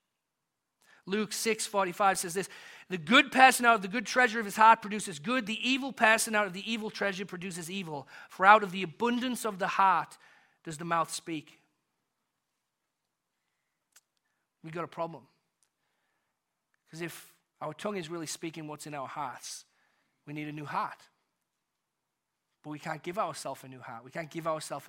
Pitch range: 155-215 Hz